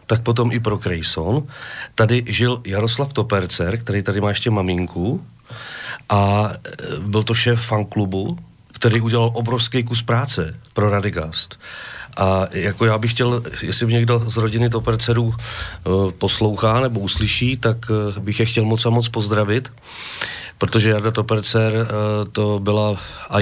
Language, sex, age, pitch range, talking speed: Slovak, male, 40-59, 105-120 Hz, 145 wpm